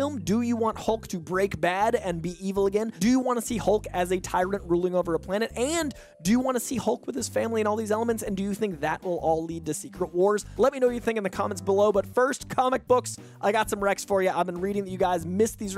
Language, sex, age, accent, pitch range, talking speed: English, male, 20-39, American, 165-210 Hz, 295 wpm